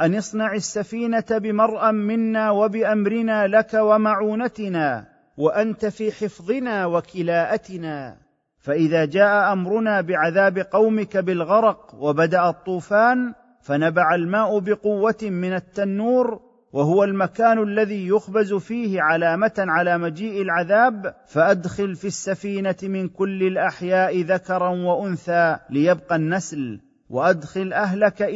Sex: male